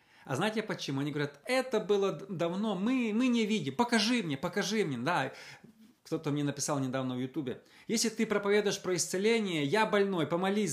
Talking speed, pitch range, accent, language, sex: 175 wpm, 155-210 Hz, native, Russian, male